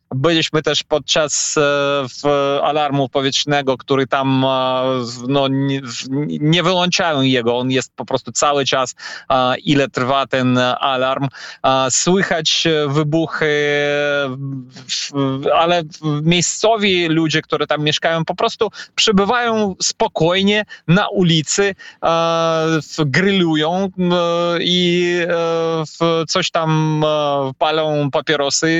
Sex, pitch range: male, 140-175 Hz